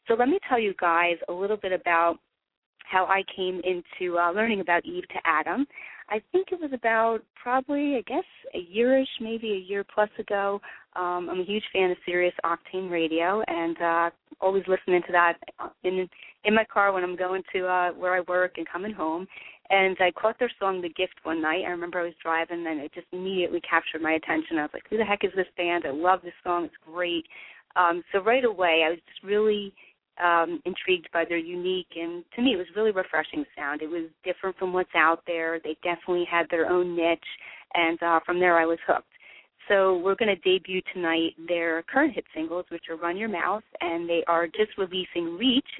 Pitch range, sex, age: 170-200 Hz, female, 30-49